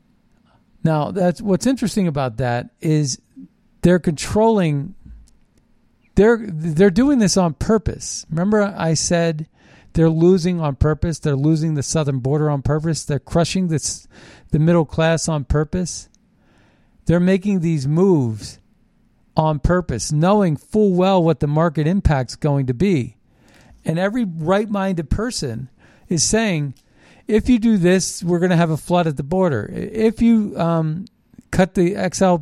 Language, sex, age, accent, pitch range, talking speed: English, male, 50-69, American, 150-185 Hz, 145 wpm